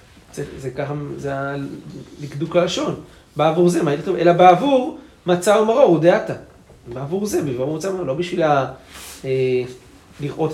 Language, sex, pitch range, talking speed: Hebrew, male, 105-175 Hz, 125 wpm